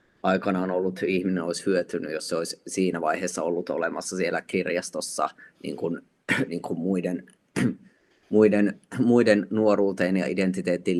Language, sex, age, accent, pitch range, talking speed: Finnish, male, 30-49, native, 90-110 Hz, 130 wpm